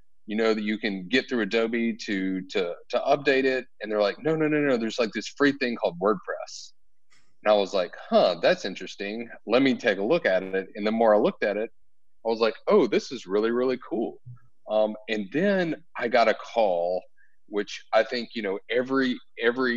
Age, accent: 30-49, American